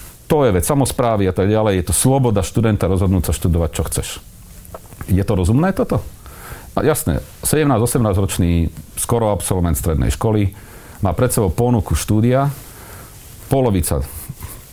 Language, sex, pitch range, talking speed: Slovak, male, 85-115 Hz, 135 wpm